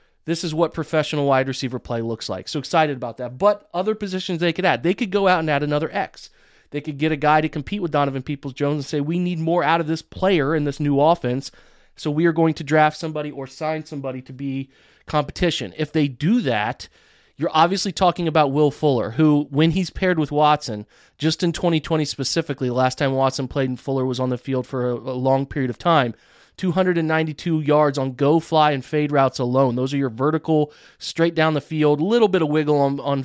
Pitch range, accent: 140-165 Hz, American